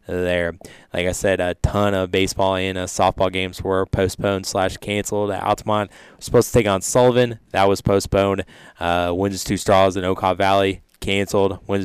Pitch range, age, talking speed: 90-100 Hz, 20-39, 175 wpm